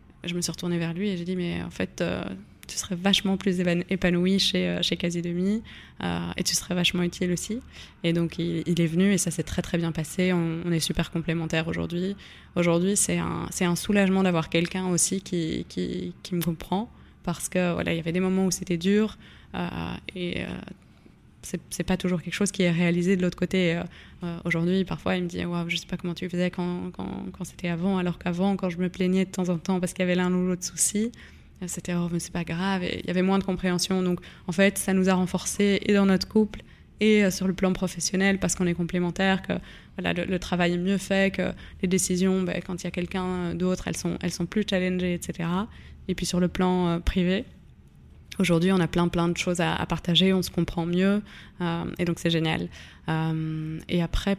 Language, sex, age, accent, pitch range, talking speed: French, female, 20-39, French, 170-185 Hz, 235 wpm